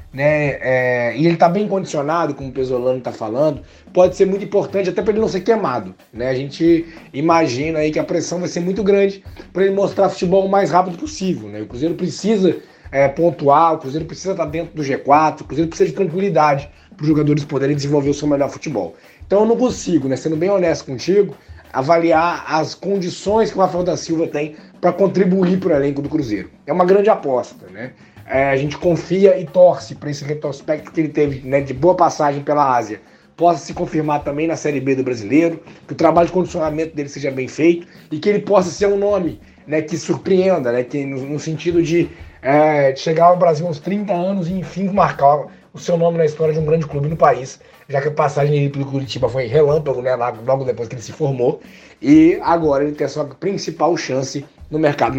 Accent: Brazilian